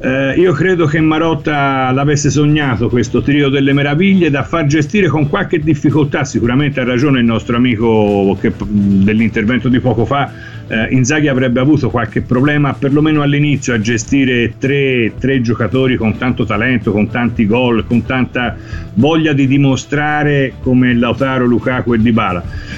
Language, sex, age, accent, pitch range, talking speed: Italian, male, 50-69, native, 120-150 Hz, 150 wpm